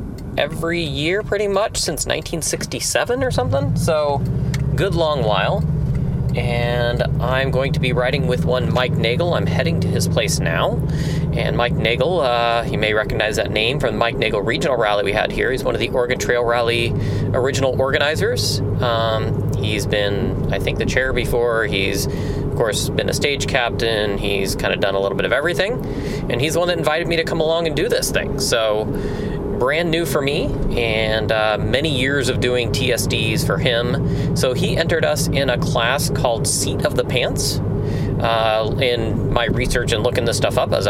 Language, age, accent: English, 30-49, American